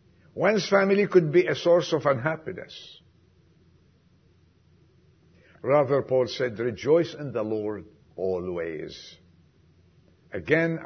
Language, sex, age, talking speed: English, male, 60-79, 95 wpm